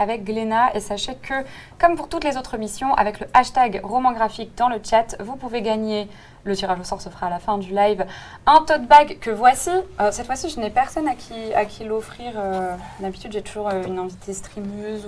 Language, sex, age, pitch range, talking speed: French, female, 20-39, 200-250 Hz, 225 wpm